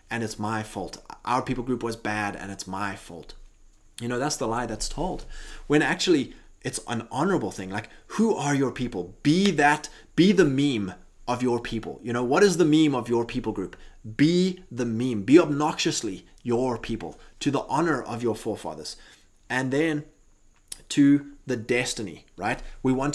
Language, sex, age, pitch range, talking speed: English, male, 20-39, 110-140 Hz, 180 wpm